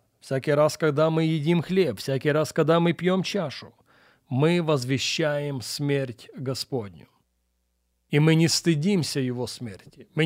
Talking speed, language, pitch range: 135 wpm, Russian, 135-175 Hz